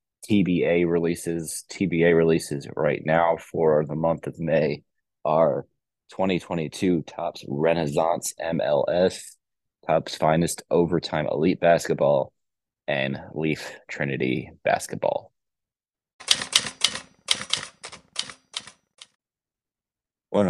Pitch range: 80-85 Hz